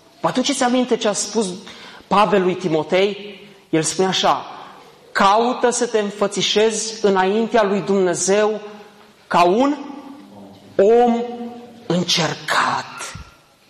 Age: 30-49